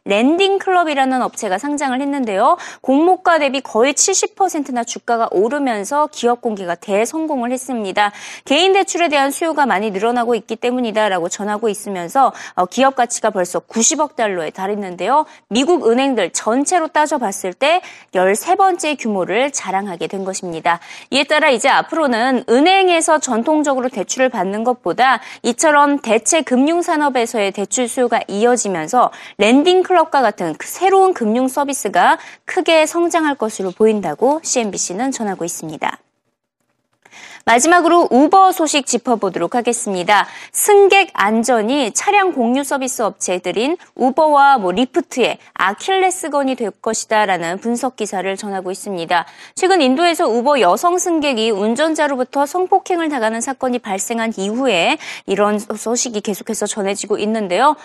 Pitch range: 210-310 Hz